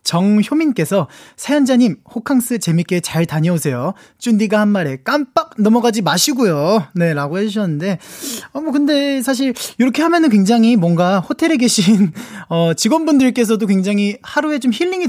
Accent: native